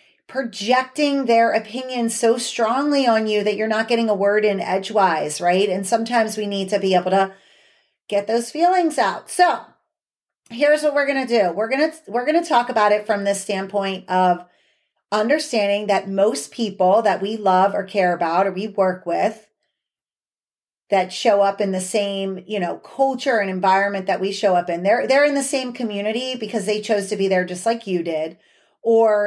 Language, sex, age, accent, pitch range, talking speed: English, female, 30-49, American, 195-240 Hz, 190 wpm